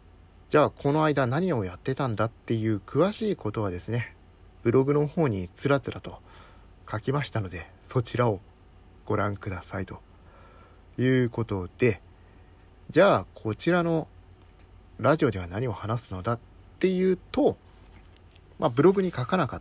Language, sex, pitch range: Japanese, male, 90-125 Hz